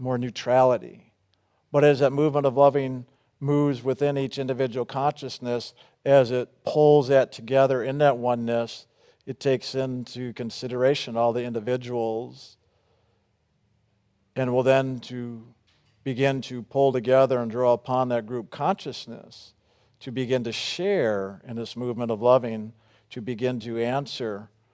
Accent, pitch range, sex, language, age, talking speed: American, 115-135 Hz, male, English, 50-69, 135 wpm